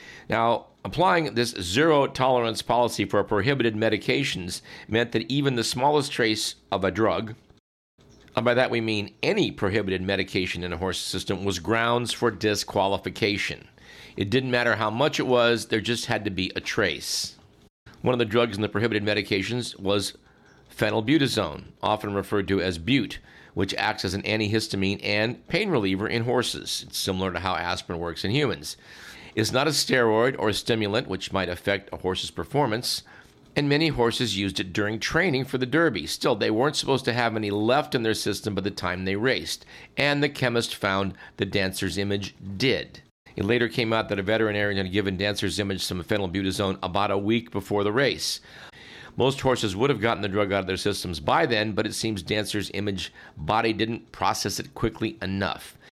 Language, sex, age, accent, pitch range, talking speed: English, male, 50-69, American, 100-120 Hz, 185 wpm